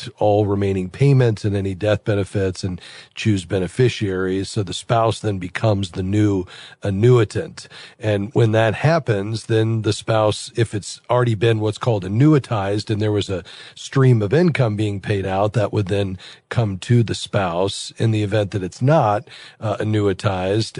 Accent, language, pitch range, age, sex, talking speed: American, English, 100-120 Hz, 40-59, male, 165 wpm